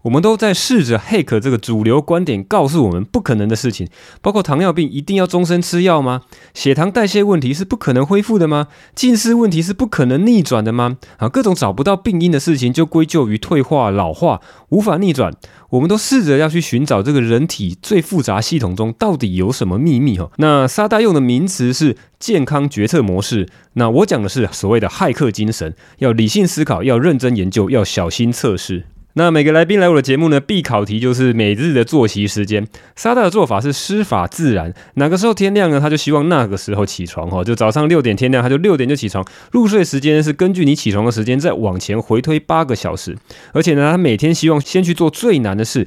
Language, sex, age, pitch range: Chinese, male, 20-39, 110-170 Hz